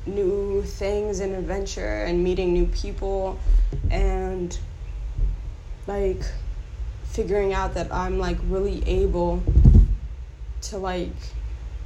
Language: English